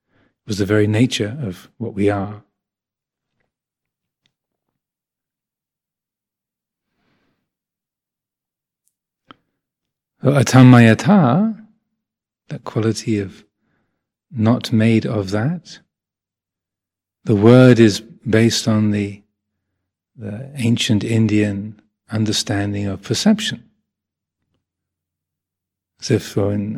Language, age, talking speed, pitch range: English, 40-59, 70 wpm, 105-125 Hz